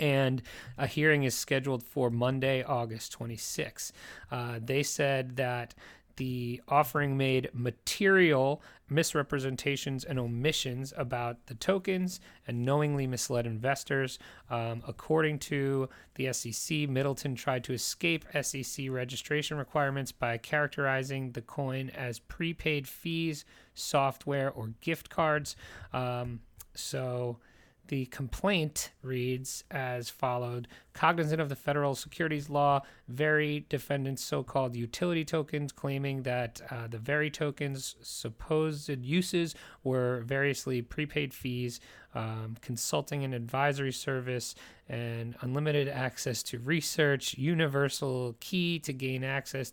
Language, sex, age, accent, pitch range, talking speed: English, male, 30-49, American, 125-145 Hz, 115 wpm